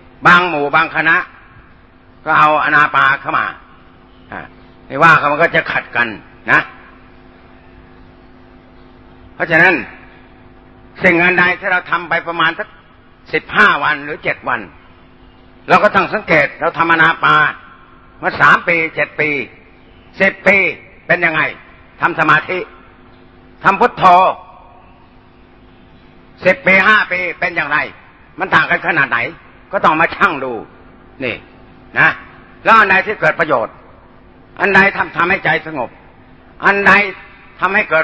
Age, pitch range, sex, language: 60-79, 135-185 Hz, male, Thai